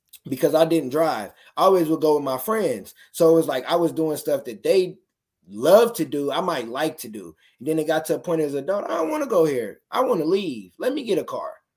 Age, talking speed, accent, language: 20-39, 275 wpm, American, English